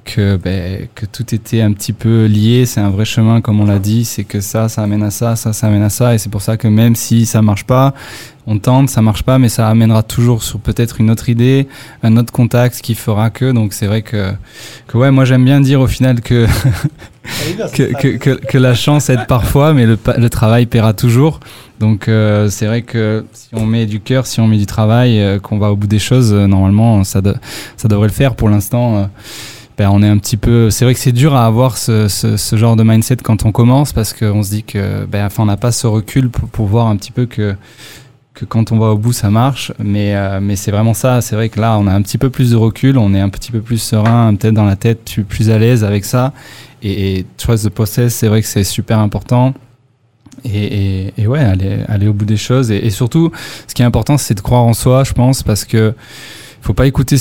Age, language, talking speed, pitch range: 20-39, French, 260 wpm, 105-125 Hz